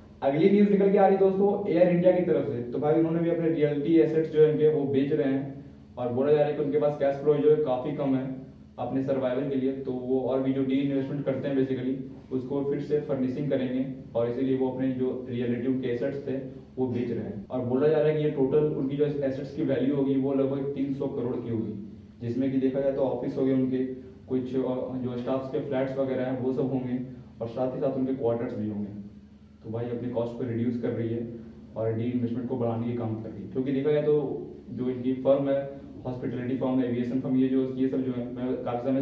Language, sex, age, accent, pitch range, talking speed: Hindi, male, 20-39, native, 120-145 Hz, 245 wpm